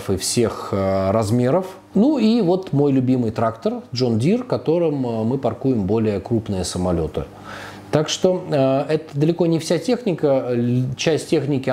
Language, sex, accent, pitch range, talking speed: Russian, male, native, 105-145 Hz, 135 wpm